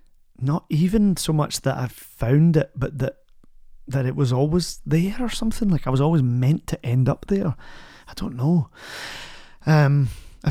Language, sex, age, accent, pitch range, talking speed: English, male, 30-49, British, 125-150 Hz, 175 wpm